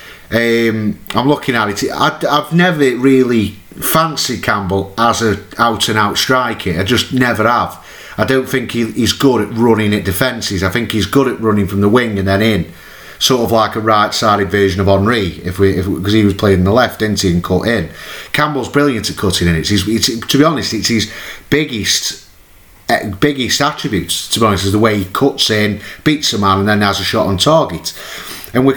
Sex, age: male, 30-49